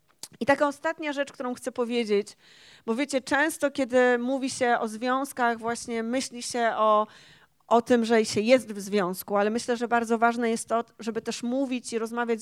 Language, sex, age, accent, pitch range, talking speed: Polish, female, 40-59, native, 215-245 Hz, 185 wpm